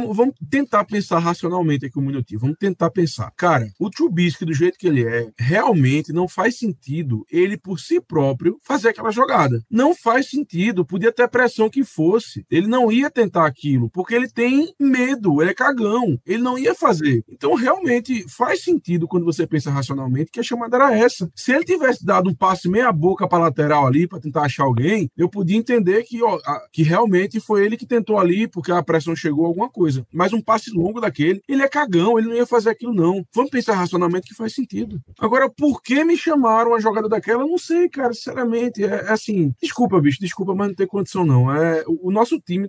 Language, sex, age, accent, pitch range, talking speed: Portuguese, male, 20-39, Brazilian, 175-250 Hz, 210 wpm